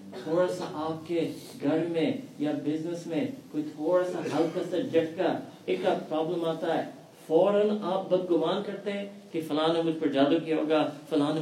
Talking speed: 165 wpm